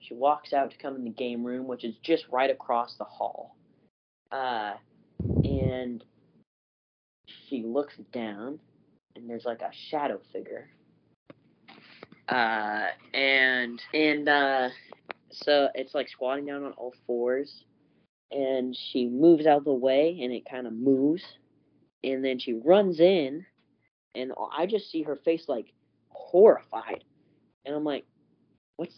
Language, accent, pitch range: English, American, 120-145 Hz